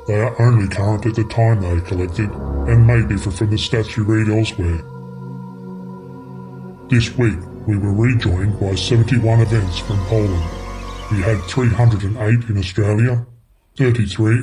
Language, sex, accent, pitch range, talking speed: English, female, American, 100-120 Hz, 140 wpm